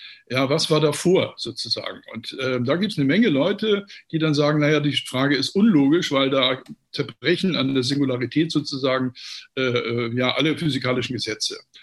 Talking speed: 170 wpm